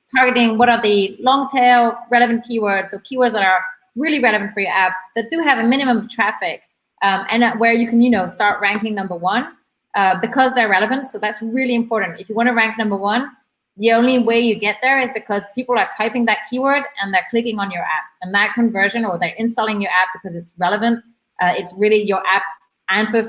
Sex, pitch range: female, 190-235 Hz